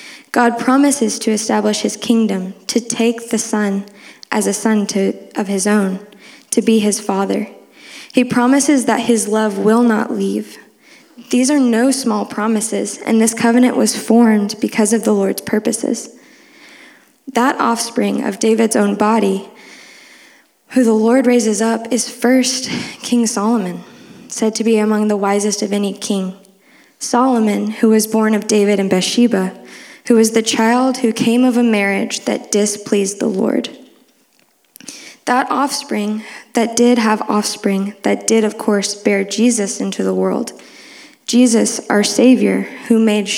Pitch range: 205-245 Hz